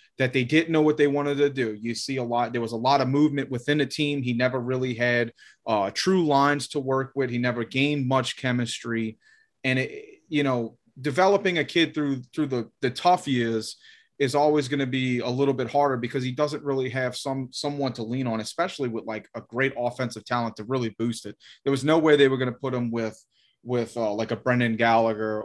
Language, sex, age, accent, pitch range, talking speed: English, male, 30-49, American, 120-140 Hz, 230 wpm